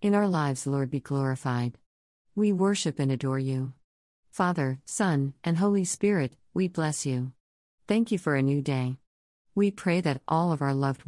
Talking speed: 175 wpm